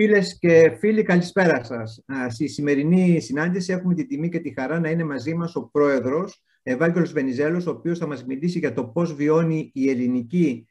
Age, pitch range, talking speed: 50-69, 135-180 Hz, 185 wpm